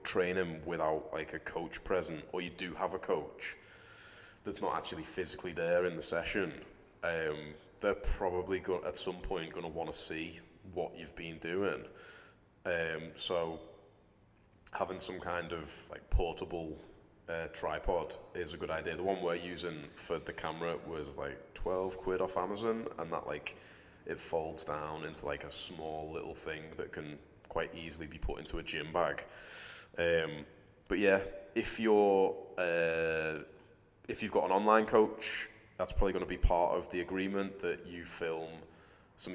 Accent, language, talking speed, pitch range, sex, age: British, English, 165 wpm, 80-100 Hz, male, 20-39